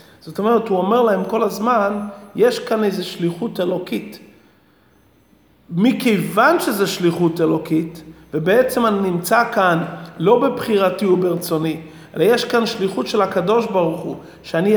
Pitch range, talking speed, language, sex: 170-210 Hz, 125 wpm, Hebrew, male